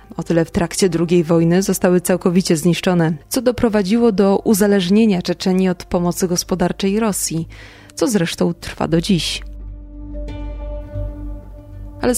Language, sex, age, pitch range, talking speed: Polish, female, 20-39, 160-195 Hz, 120 wpm